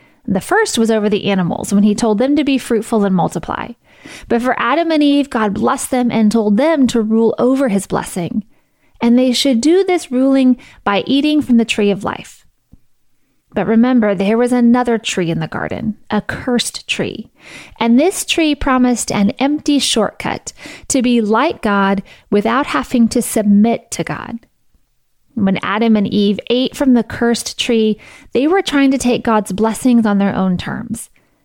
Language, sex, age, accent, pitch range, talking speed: English, female, 30-49, American, 210-255 Hz, 175 wpm